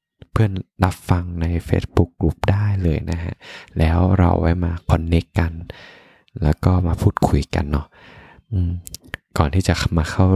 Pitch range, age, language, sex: 85-100 Hz, 20-39, Thai, male